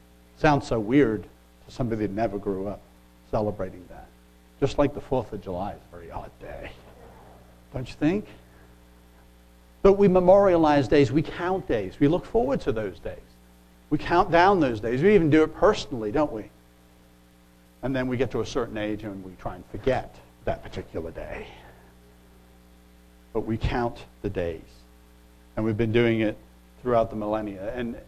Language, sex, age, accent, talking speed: English, male, 60-79, American, 170 wpm